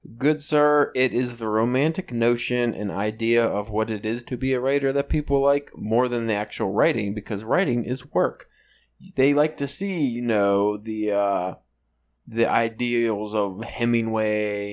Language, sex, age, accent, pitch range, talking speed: English, male, 20-39, American, 105-130 Hz, 165 wpm